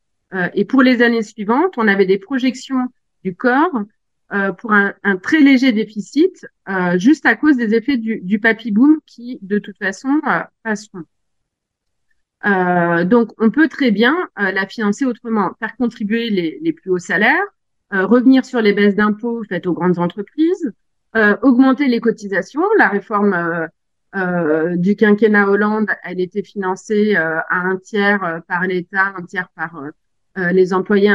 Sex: female